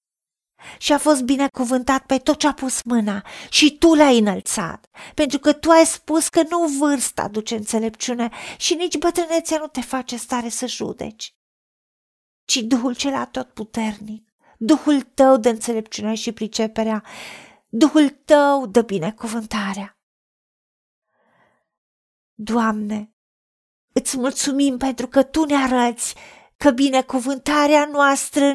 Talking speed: 120 wpm